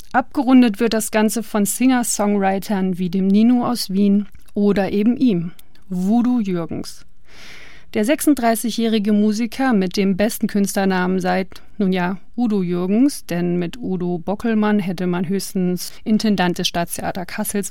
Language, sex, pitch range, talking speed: German, female, 195-230 Hz, 130 wpm